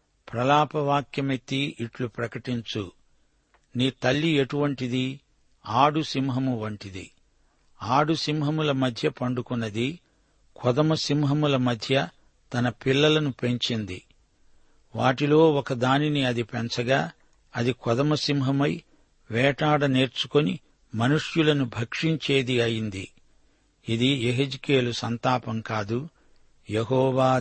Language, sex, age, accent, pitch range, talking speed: Telugu, male, 60-79, native, 120-145 Hz, 75 wpm